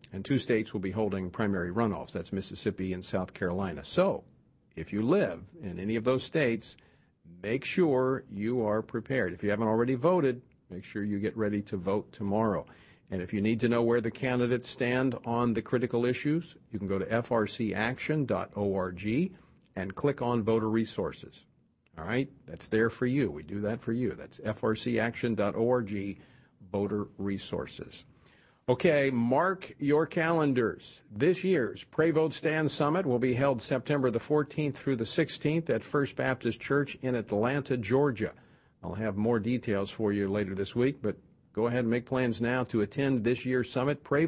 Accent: American